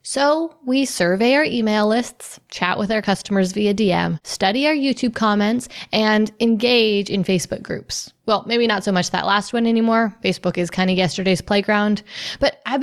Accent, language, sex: American, English, female